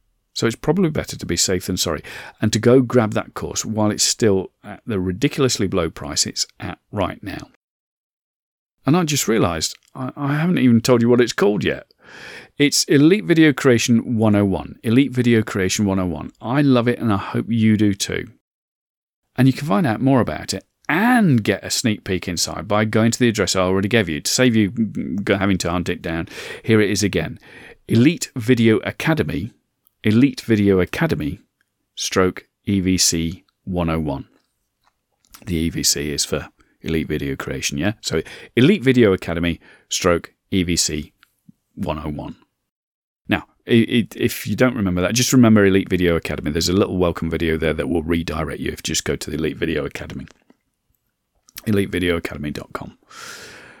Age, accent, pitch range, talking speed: 40-59, British, 90-120 Hz, 165 wpm